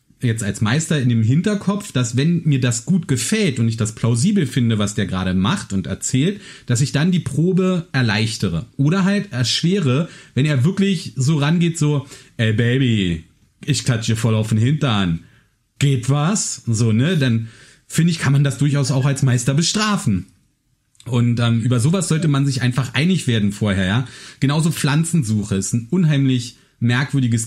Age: 40-59